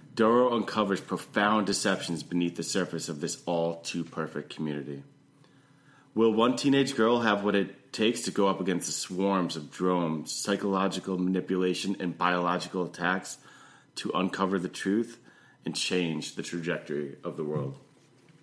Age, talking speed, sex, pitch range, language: 30-49, 140 wpm, male, 85-100 Hz, English